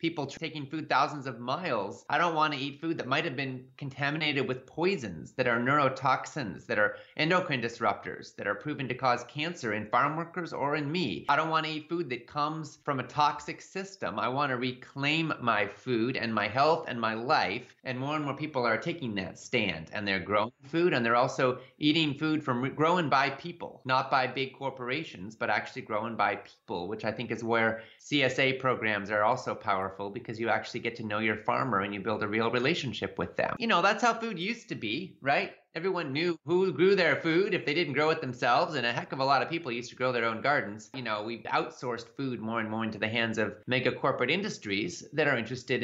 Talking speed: 225 wpm